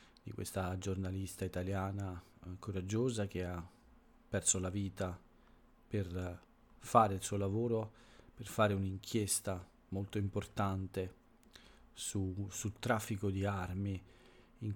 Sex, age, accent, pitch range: male, 40-59, native, 95-120 Hz